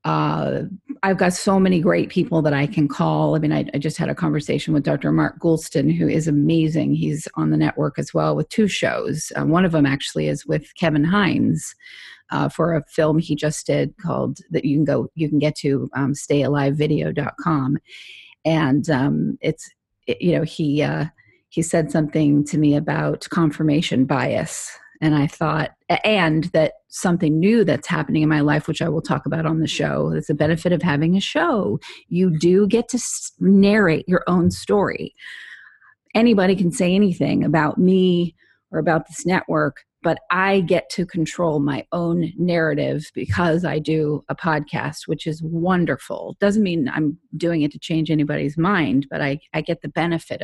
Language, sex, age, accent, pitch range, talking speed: English, female, 30-49, American, 150-185 Hz, 185 wpm